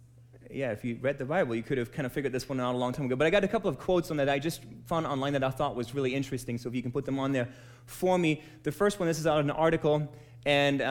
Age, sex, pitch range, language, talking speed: 30-49, male, 125-185 Hz, English, 320 wpm